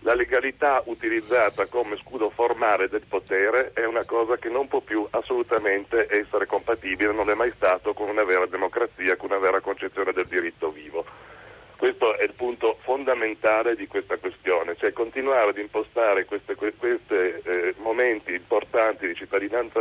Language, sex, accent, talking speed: Italian, male, native, 150 wpm